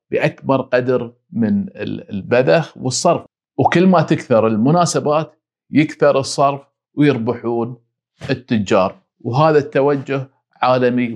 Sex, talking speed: male, 85 wpm